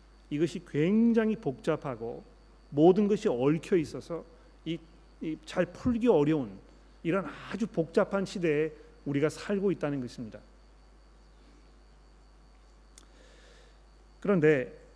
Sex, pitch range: male, 145-190 Hz